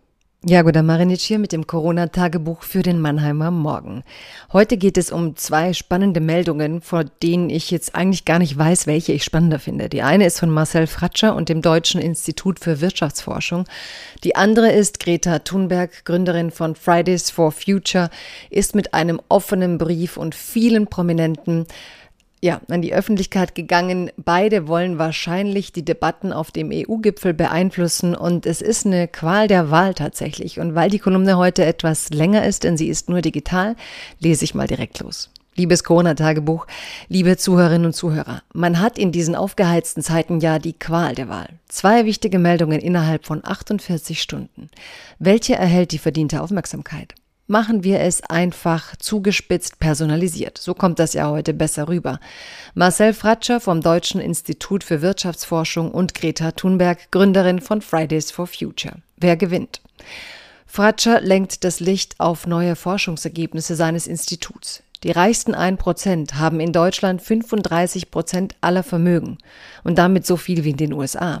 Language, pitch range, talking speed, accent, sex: German, 165-185 Hz, 155 wpm, German, female